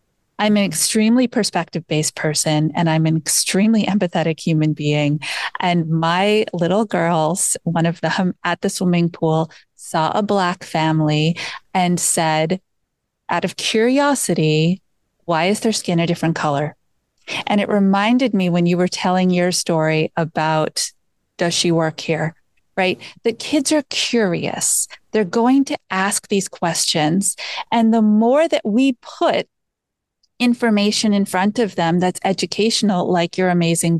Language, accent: English, American